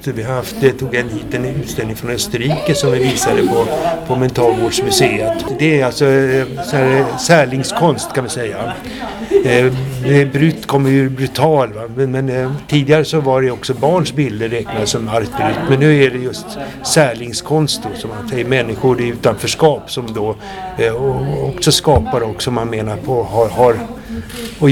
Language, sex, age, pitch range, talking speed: Swedish, male, 60-79, 120-145 Hz, 165 wpm